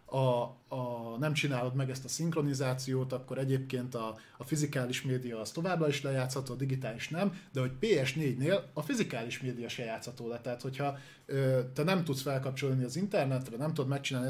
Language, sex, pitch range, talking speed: Hungarian, male, 130-150 Hz, 175 wpm